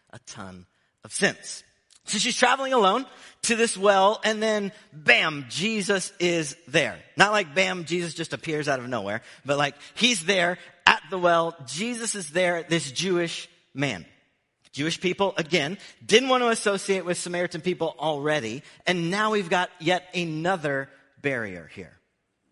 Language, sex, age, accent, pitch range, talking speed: English, male, 40-59, American, 155-210 Hz, 155 wpm